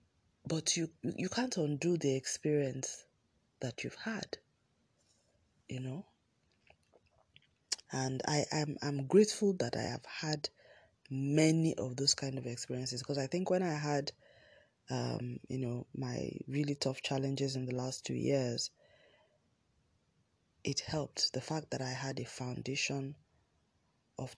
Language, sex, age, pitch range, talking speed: English, female, 20-39, 130-155 Hz, 135 wpm